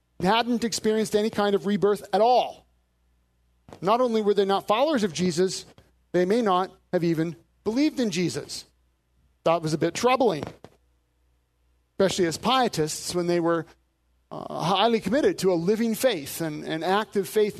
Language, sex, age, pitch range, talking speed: English, male, 40-59, 155-215 Hz, 155 wpm